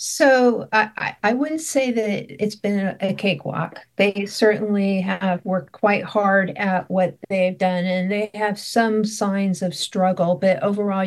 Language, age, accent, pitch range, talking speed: English, 50-69, American, 185-215 Hz, 155 wpm